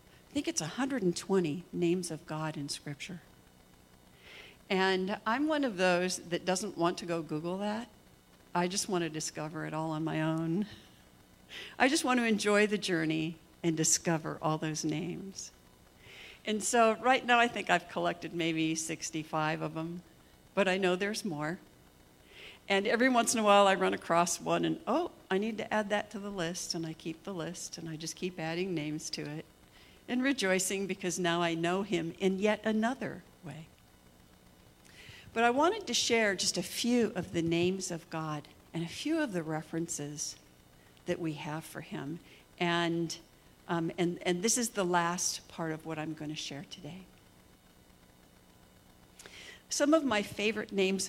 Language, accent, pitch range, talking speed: English, American, 155-195 Hz, 175 wpm